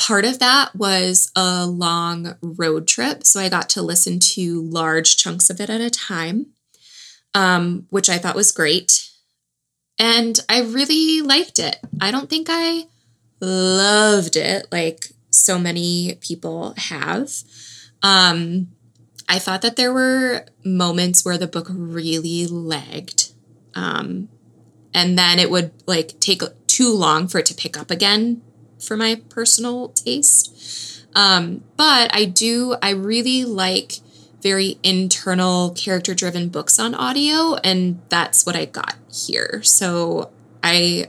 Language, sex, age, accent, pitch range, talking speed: English, female, 20-39, American, 175-225 Hz, 140 wpm